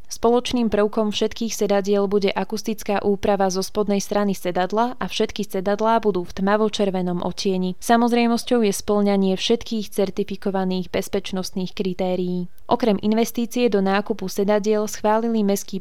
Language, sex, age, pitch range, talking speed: Slovak, female, 20-39, 190-215 Hz, 125 wpm